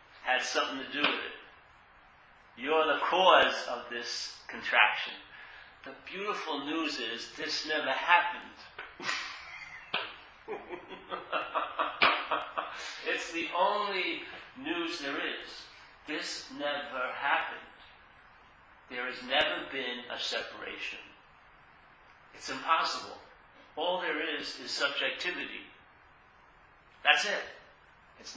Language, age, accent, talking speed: English, 40-59, American, 95 wpm